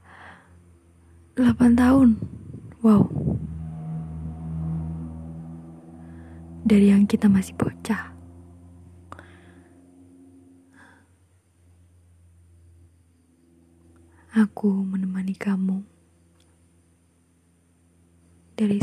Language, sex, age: Indonesian, female, 20-39